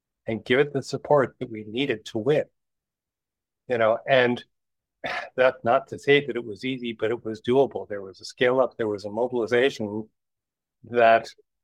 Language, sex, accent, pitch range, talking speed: English, male, American, 105-130 Hz, 180 wpm